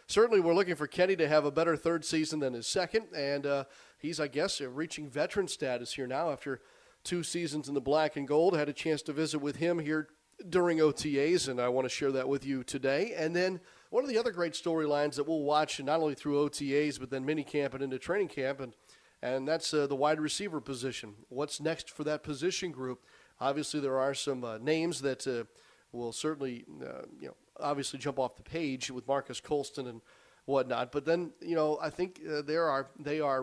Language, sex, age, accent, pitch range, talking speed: English, male, 40-59, American, 130-155 Hz, 210 wpm